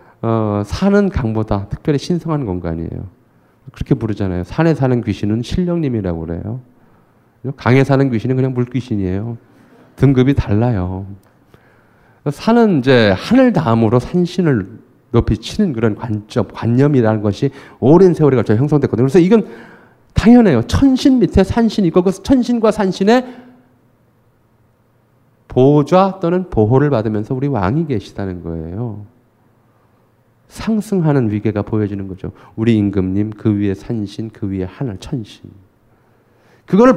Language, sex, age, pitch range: Korean, male, 40-59, 105-150 Hz